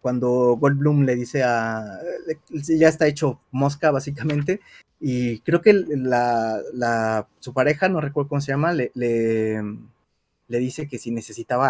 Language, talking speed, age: Spanish, 150 wpm, 30-49